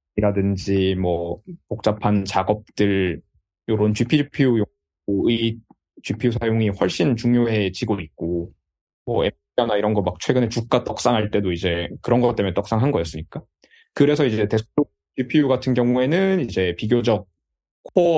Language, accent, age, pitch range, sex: Korean, native, 20-39, 95-135 Hz, male